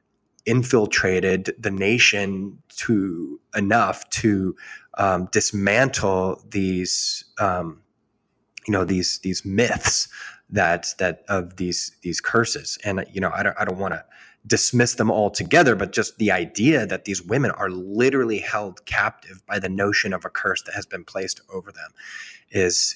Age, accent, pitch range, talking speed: 20-39, American, 95-105 Hz, 150 wpm